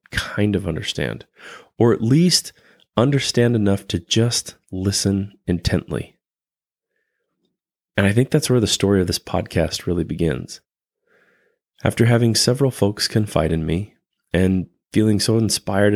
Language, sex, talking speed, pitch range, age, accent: English, male, 130 wpm, 90-110 Hz, 30-49, American